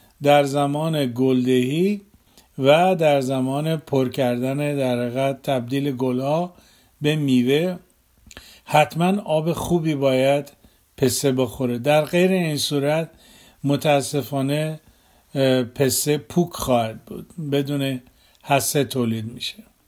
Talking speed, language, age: 95 wpm, Persian, 50-69